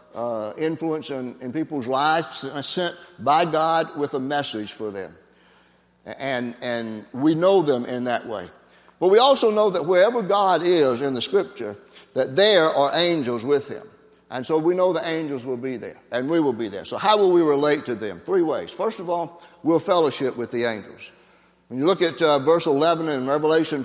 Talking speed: 195 wpm